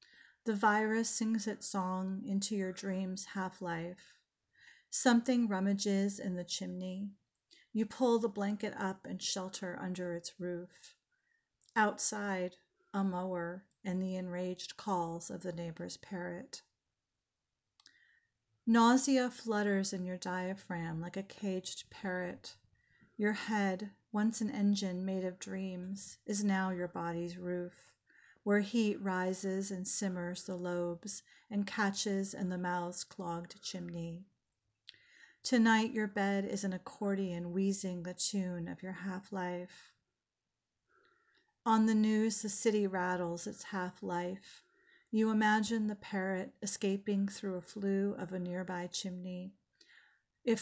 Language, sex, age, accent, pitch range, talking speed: English, female, 40-59, American, 180-210 Hz, 125 wpm